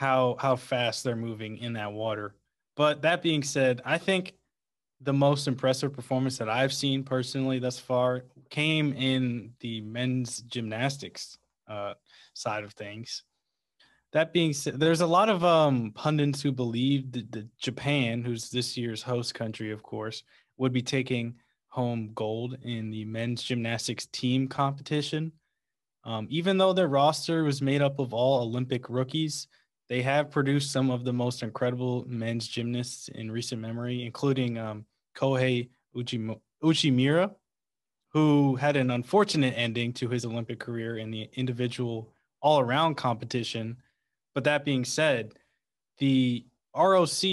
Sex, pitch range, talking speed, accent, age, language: male, 115-140 Hz, 145 wpm, American, 20-39, English